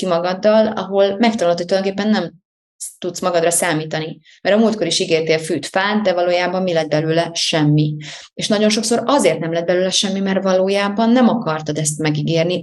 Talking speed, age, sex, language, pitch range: 170 wpm, 30-49, female, Hungarian, 160-195 Hz